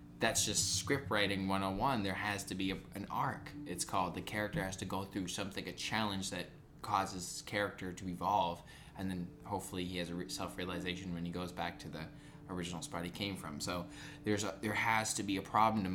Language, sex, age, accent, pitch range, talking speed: English, male, 20-39, American, 95-110 Hz, 215 wpm